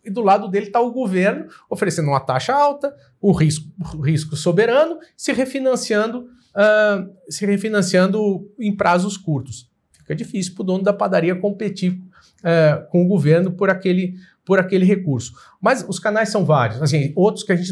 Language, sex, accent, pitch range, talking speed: Portuguese, male, Brazilian, 150-205 Hz, 150 wpm